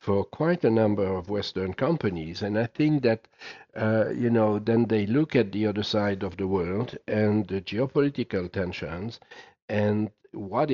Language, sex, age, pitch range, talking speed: English, male, 60-79, 90-110 Hz, 170 wpm